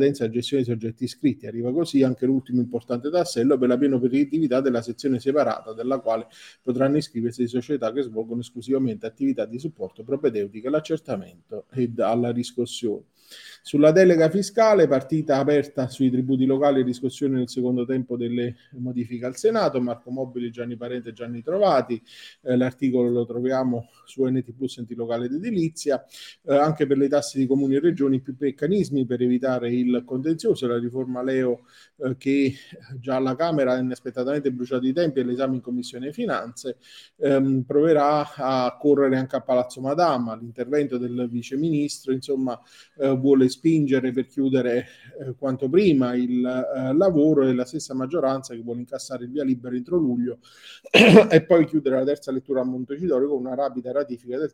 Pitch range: 120-140 Hz